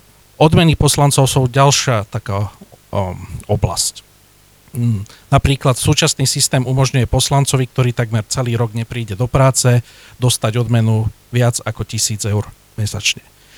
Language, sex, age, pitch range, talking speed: Slovak, male, 40-59, 110-135 Hz, 115 wpm